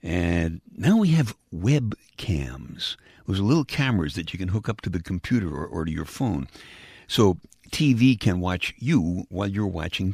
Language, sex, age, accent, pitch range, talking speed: English, male, 60-79, American, 80-120 Hz, 170 wpm